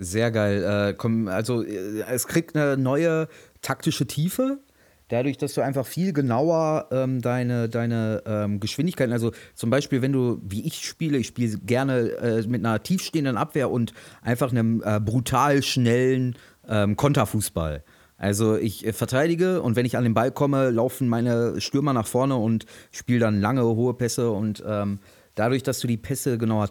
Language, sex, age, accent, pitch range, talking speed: German, male, 30-49, German, 100-125 Hz, 150 wpm